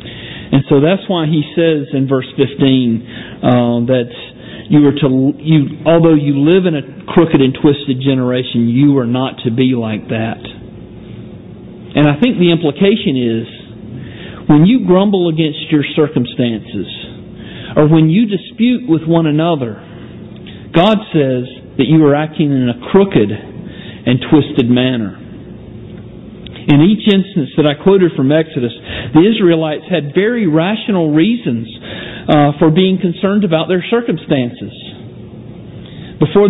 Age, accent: 40-59, American